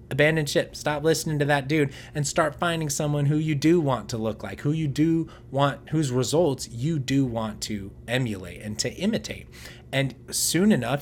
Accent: American